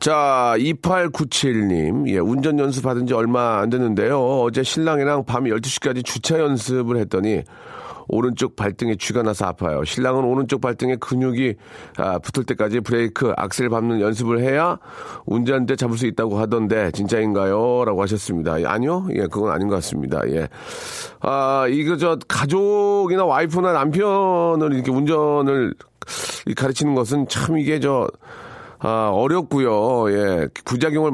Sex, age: male, 40-59